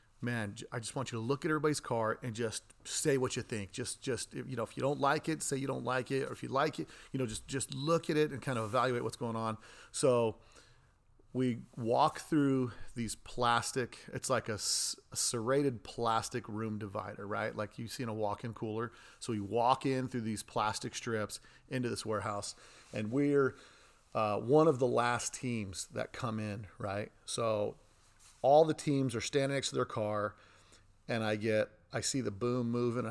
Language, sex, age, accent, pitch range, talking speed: English, male, 40-59, American, 110-130 Hz, 205 wpm